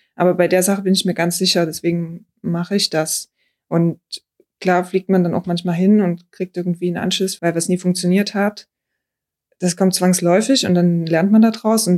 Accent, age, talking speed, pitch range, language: German, 20-39, 205 wpm, 180-200 Hz, German